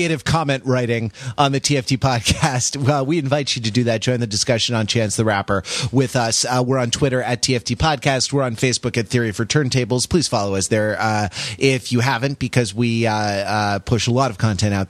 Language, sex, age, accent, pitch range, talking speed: English, male, 30-49, American, 105-130 Hz, 220 wpm